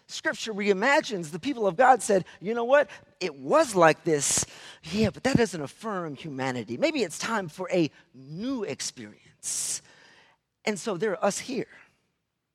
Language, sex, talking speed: English, male, 160 wpm